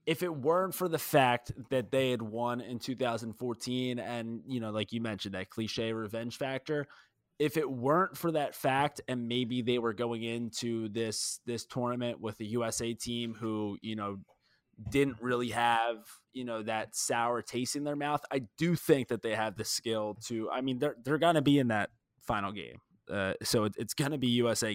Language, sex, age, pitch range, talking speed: English, male, 20-39, 110-130 Hz, 200 wpm